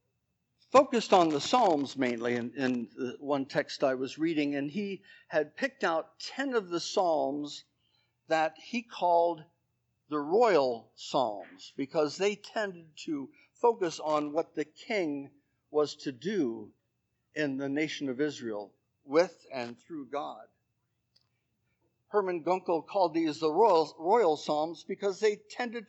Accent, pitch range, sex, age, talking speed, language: American, 140-200 Hz, male, 60-79, 140 wpm, English